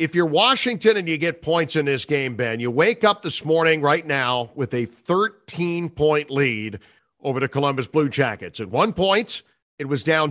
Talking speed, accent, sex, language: 190 wpm, American, male, English